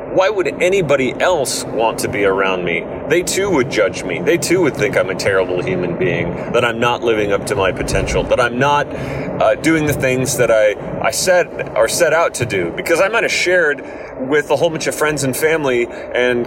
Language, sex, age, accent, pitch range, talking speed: English, male, 30-49, American, 110-160 Hz, 220 wpm